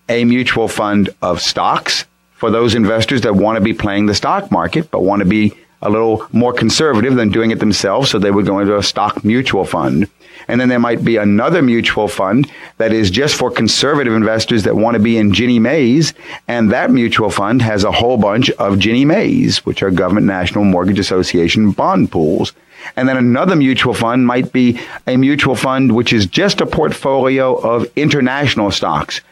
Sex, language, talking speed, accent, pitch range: male, English, 195 wpm, American, 105-120 Hz